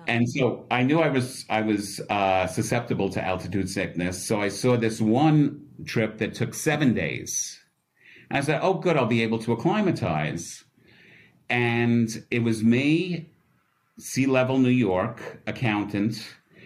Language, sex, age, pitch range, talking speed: English, male, 50-69, 110-150 Hz, 150 wpm